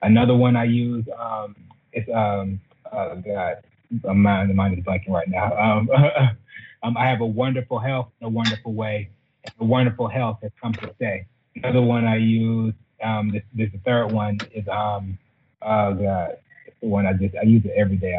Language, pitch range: English, 105-125 Hz